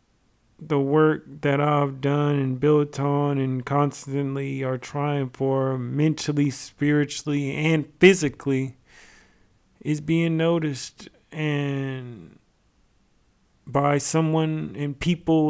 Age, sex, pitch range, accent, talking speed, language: 40-59, male, 125-155 Hz, American, 95 wpm, English